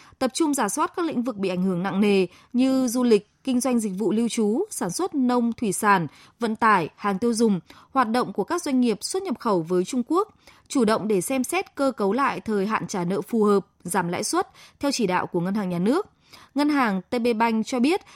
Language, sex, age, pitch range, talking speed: Vietnamese, female, 20-39, 205-275 Hz, 245 wpm